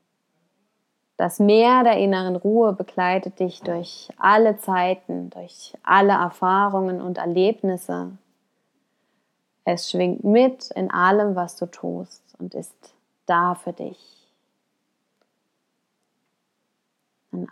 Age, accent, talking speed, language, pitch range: 20-39, German, 100 wpm, German, 180-215 Hz